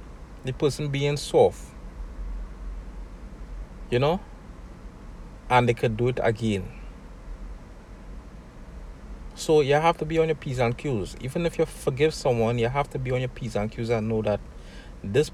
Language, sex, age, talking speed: English, male, 60-79, 155 wpm